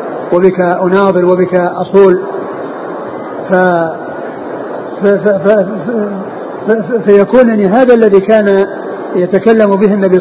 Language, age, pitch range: Arabic, 50-69, 185-205 Hz